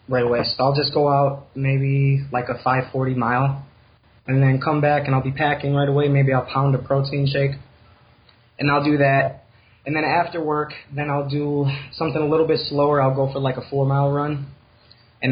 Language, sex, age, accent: English, male, 20-39, American